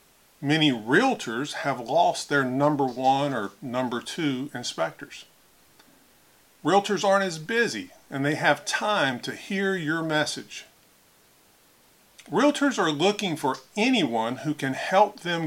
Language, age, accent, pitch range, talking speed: English, 50-69, American, 135-190 Hz, 125 wpm